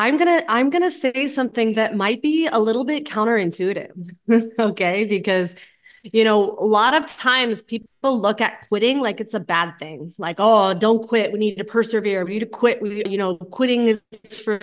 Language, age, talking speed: English, 20-39, 195 wpm